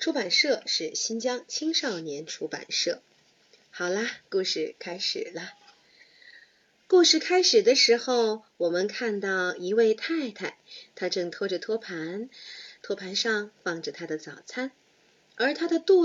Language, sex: Chinese, female